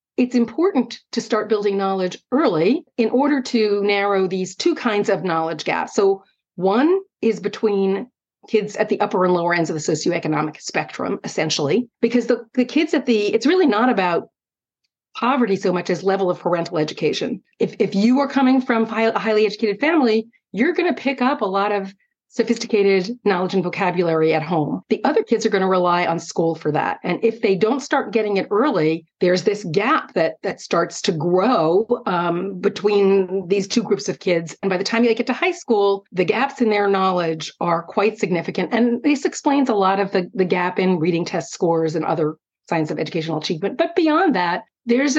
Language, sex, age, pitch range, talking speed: English, female, 40-59, 185-245 Hz, 200 wpm